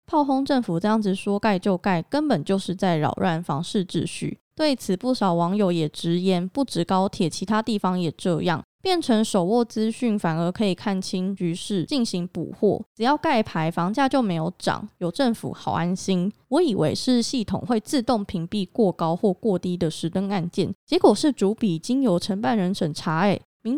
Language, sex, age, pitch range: Chinese, female, 20-39, 175-230 Hz